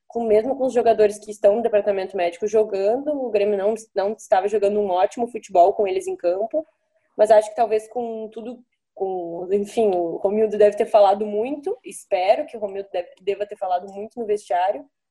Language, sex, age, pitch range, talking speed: Portuguese, female, 20-39, 205-245 Hz, 190 wpm